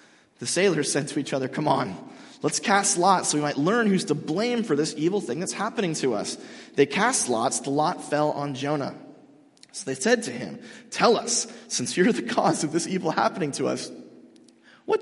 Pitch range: 155-255 Hz